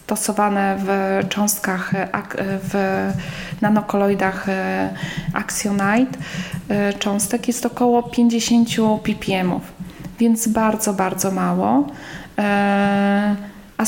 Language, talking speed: Polish, 70 wpm